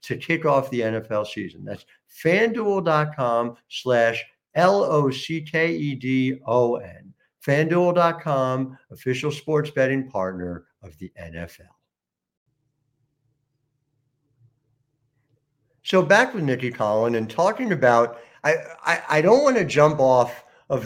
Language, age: English, 60-79